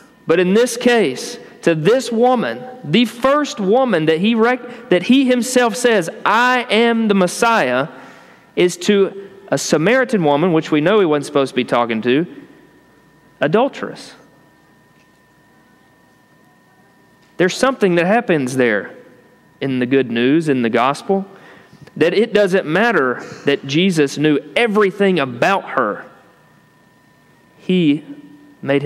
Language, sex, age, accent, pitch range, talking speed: English, male, 40-59, American, 130-200 Hz, 125 wpm